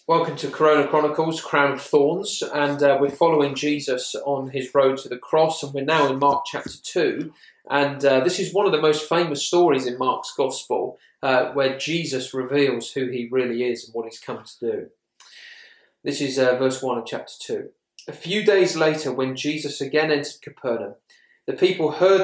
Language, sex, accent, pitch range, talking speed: English, male, British, 135-170 Hz, 190 wpm